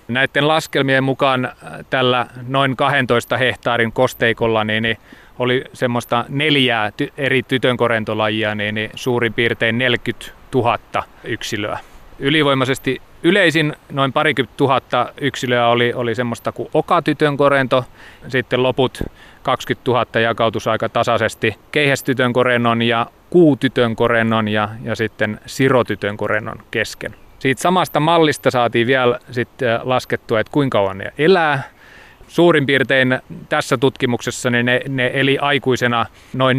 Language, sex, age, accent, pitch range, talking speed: Finnish, male, 30-49, native, 115-135 Hz, 115 wpm